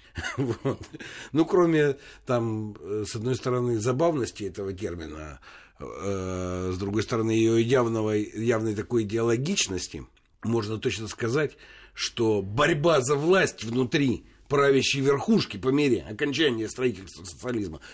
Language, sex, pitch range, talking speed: Russian, male, 105-150 Hz, 110 wpm